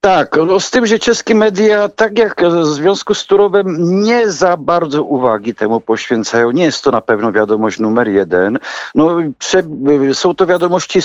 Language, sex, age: Polish, male, 50-69